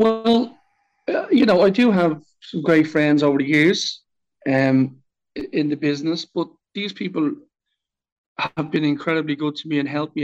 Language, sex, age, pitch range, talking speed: English, male, 50-69, 140-175 Hz, 170 wpm